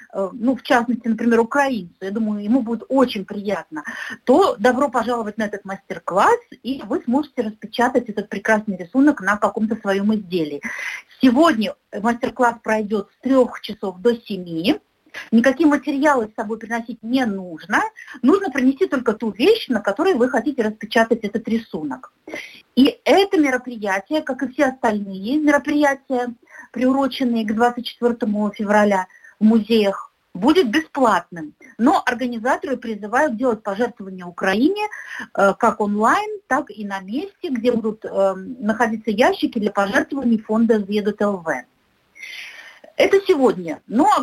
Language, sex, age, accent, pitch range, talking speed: Russian, female, 50-69, native, 210-275 Hz, 135 wpm